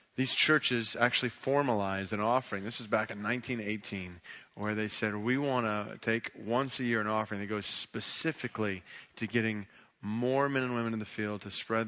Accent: American